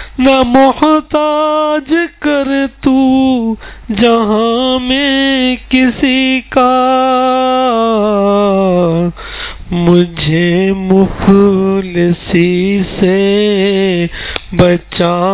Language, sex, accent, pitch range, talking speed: English, male, Indian, 150-200 Hz, 45 wpm